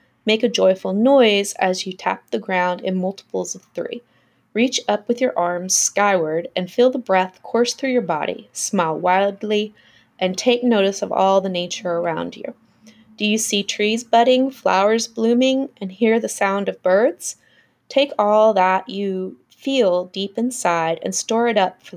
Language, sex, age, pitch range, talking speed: English, female, 20-39, 185-235 Hz, 170 wpm